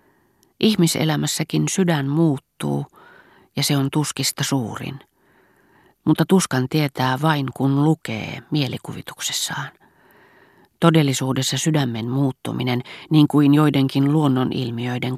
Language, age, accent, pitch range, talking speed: Finnish, 40-59, native, 125-150 Hz, 85 wpm